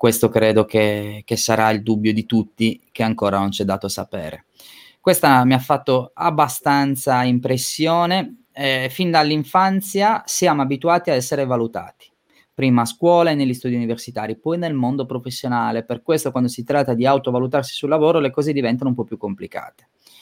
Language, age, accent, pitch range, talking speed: Italian, 20-39, native, 125-155 Hz, 170 wpm